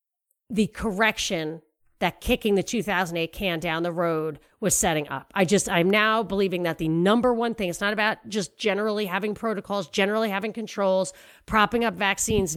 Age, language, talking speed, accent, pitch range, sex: 40-59, English, 170 wpm, American, 185-235 Hz, female